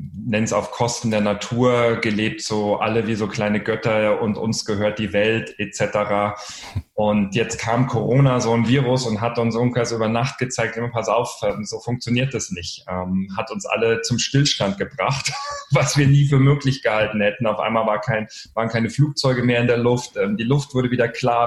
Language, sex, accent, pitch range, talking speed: German, male, German, 105-125 Hz, 195 wpm